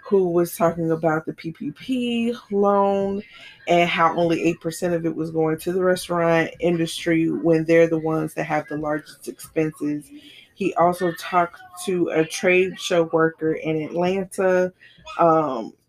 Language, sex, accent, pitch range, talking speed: English, female, American, 160-185 Hz, 145 wpm